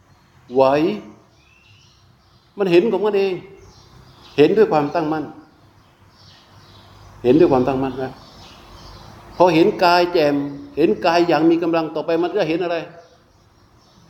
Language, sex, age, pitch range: Thai, male, 60-79, 135-175 Hz